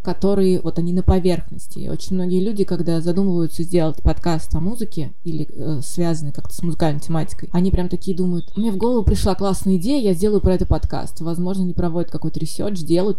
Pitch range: 165-190 Hz